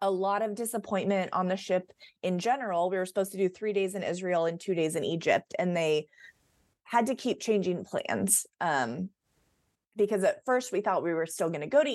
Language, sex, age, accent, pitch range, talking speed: English, female, 30-49, American, 185-235 Hz, 215 wpm